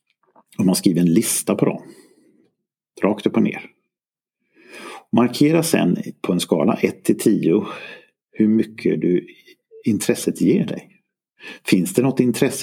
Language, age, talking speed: Swedish, 50-69, 140 wpm